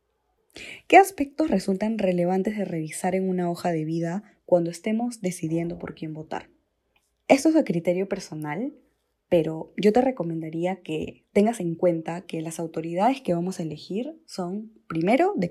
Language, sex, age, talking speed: Spanish, female, 20-39, 155 wpm